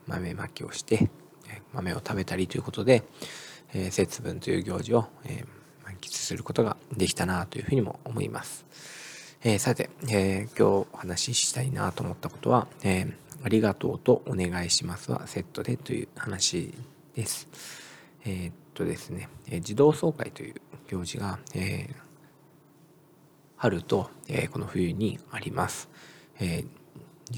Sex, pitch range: male, 100-140 Hz